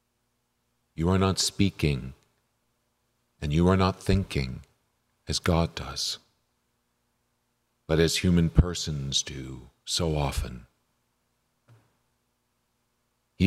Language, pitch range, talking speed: English, 70-100 Hz, 90 wpm